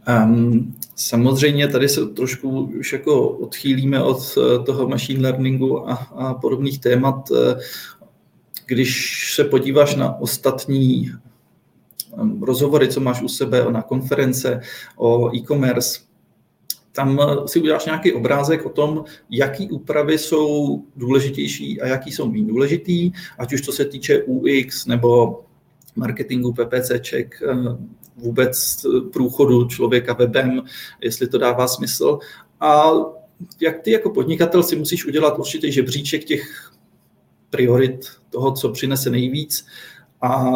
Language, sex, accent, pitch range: Czech, male, native, 125-155 Hz